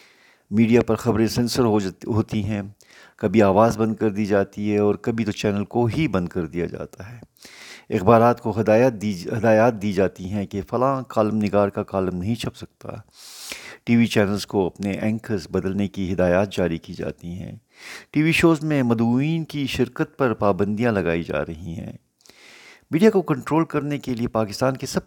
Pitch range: 100-120 Hz